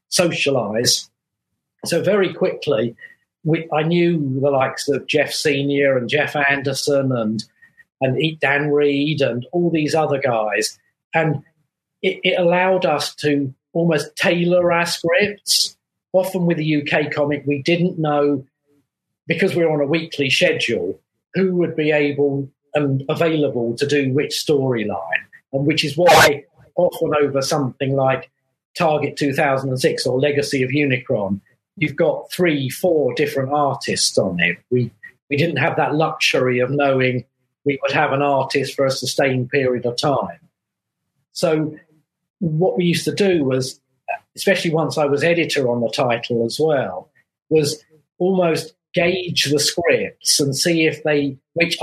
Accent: British